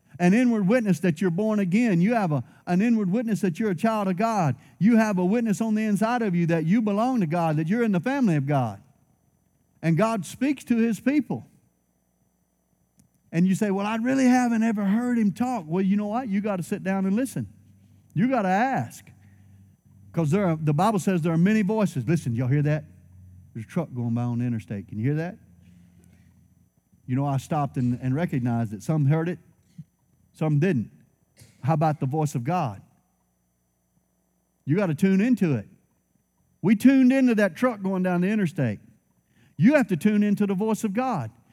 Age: 50-69